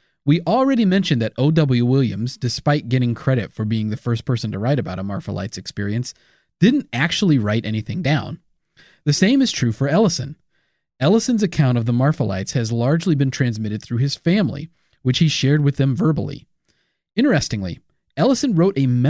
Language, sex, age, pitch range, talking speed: English, male, 30-49, 115-160 Hz, 175 wpm